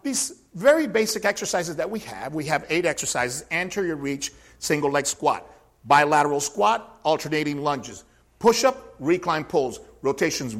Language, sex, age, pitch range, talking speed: English, male, 50-69, 150-240 Hz, 135 wpm